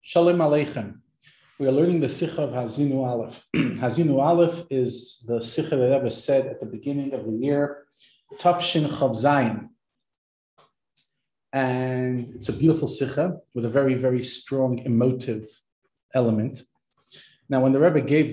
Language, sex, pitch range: English, male, 115-145 Hz